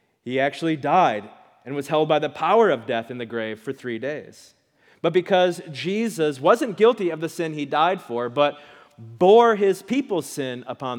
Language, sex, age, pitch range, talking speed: English, male, 30-49, 145-190 Hz, 185 wpm